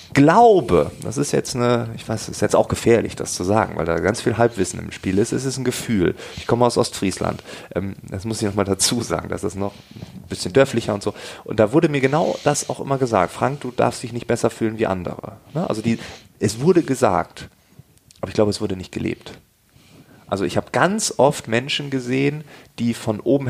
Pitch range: 105-135 Hz